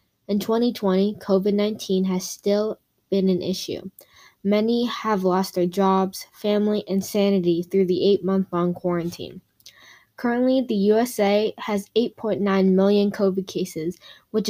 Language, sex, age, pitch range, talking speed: English, female, 10-29, 185-210 Hz, 120 wpm